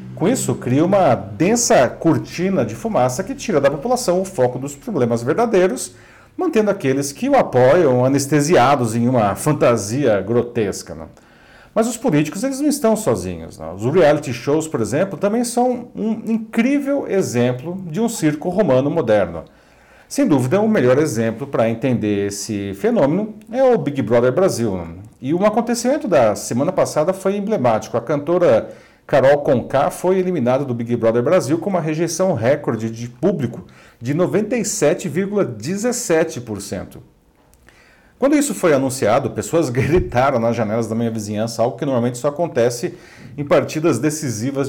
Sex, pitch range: male, 115-190 Hz